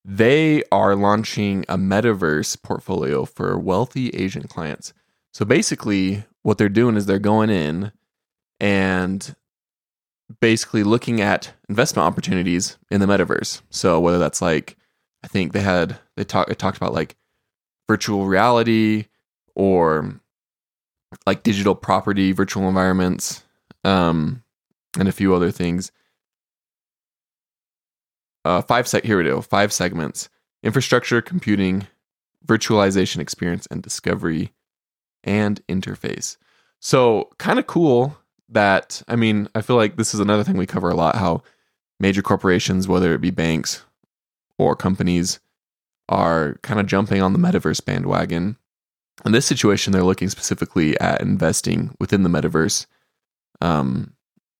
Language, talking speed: English, 130 wpm